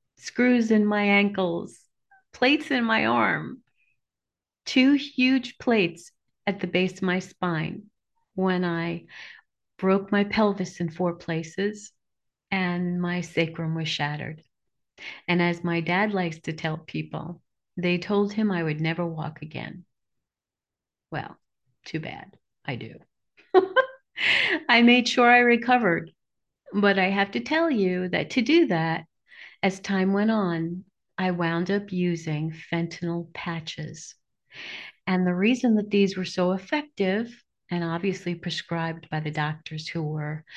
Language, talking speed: English, 135 wpm